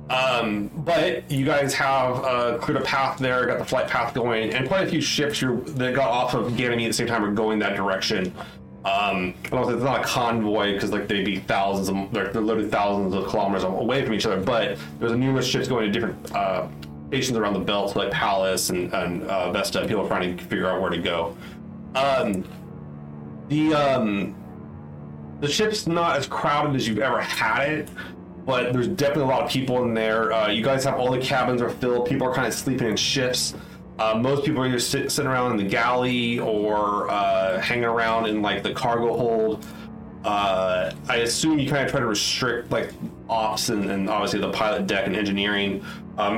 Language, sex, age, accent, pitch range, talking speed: English, male, 30-49, American, 95-130 Hz, 205 wpm